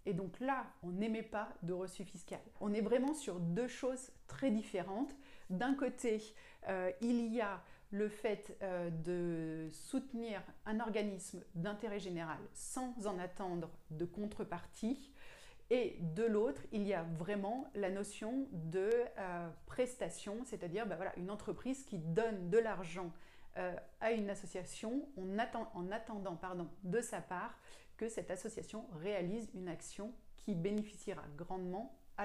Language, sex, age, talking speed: French, female, 30-49, 155 wpm